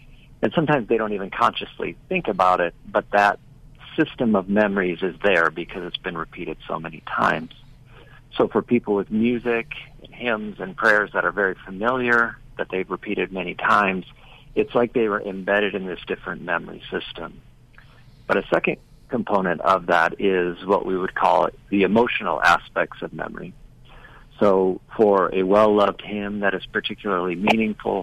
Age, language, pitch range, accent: 50-69, English, 95-115 Hz, American